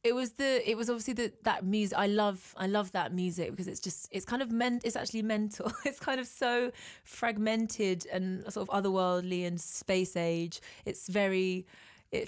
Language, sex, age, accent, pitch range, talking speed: English, female, 20-39, British, 175-210 Hz, 195 wpm